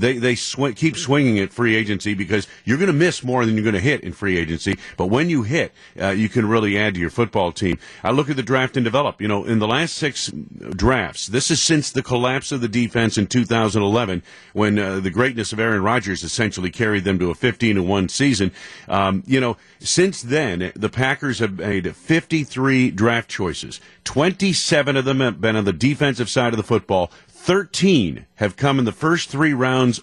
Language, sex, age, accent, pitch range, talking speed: English, male, 50-69, American, 100-130 Hz, 210 wpm